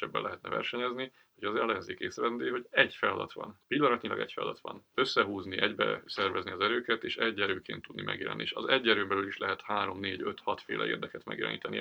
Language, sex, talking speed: Hungarian, male, 195 wpm